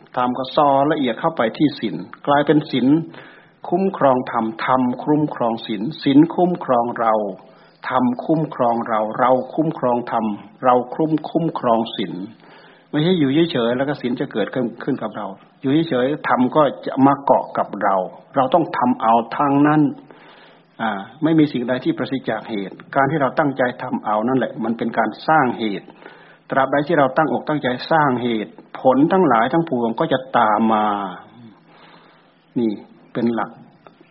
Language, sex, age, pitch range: Thai, male, 60-79, 115-150 Hz